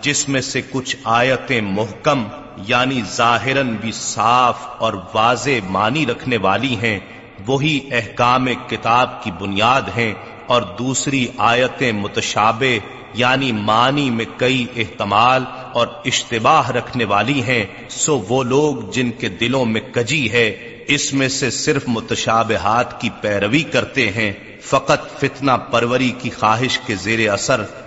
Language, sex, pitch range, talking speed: Urdu, male, 110-135 Hz, 135 wpm